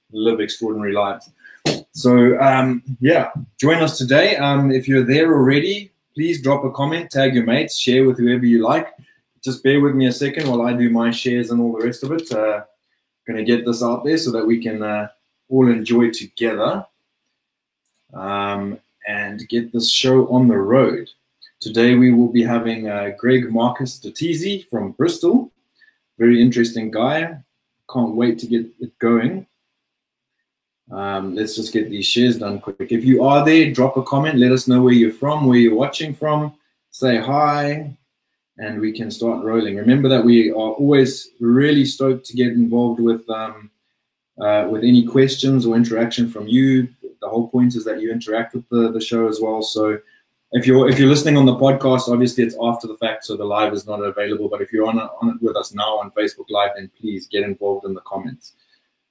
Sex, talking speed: male, 190 wpm